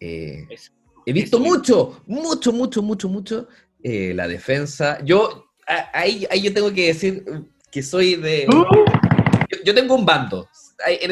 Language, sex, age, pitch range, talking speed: Spanish, male, 30-49, 135-210 Hz, 145 wpm